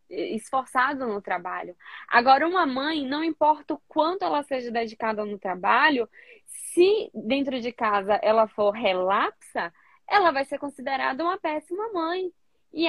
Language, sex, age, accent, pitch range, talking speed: Portuguese, female, 10-29, Brazilian, 225-315 Hz, 140 wpm